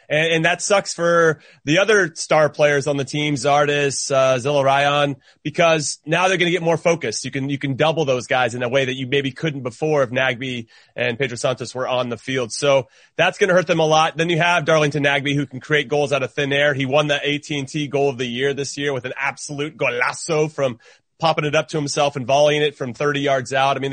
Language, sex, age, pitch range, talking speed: English, male, 30-49, 140-185 Hz, 245 wpm